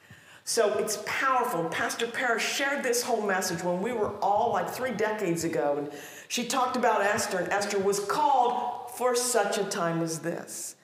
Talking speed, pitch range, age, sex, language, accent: 175 wpm, 170-275 Hz, 50-69, female, English, American